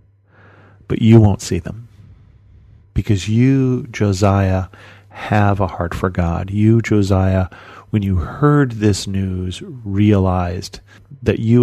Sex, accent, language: male, American, English